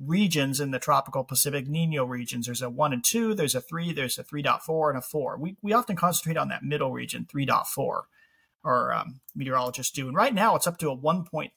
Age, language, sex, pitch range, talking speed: 40-59, English, male, 130-170 Hz, 225 wpm